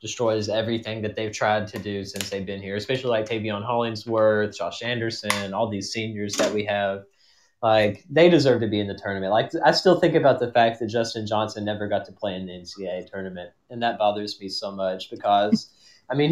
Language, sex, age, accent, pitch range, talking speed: English, male, 20-39, American, 100-115 Hz, 215 wpm